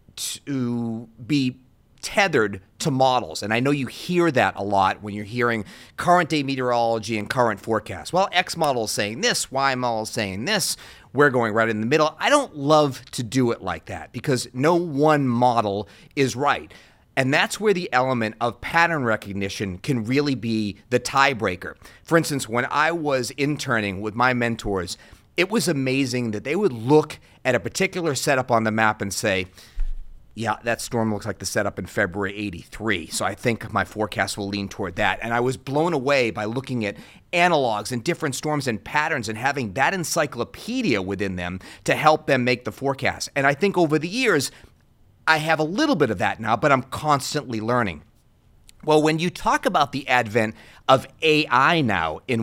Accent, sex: American, male